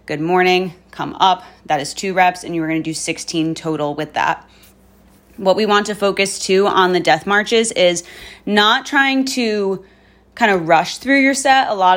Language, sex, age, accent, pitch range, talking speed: English, female, 20-39, American, 170-195 Hz, 195 wpm